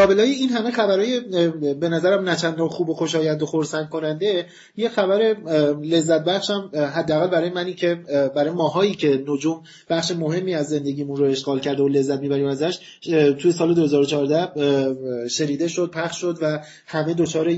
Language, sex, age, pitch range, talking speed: Persian, male, 30-49, 150-180 Hz, 155 wpm